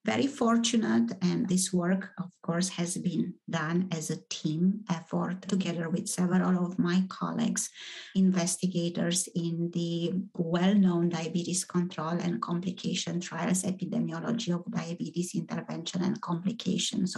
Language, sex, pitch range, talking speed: English, female, 175-195 Hz, 120 wpm